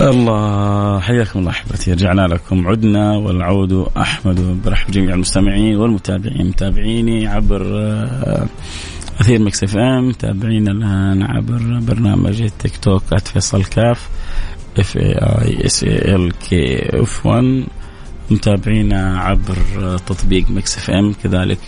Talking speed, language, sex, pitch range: 115 wpm, Arabic, male, 95-115 Hz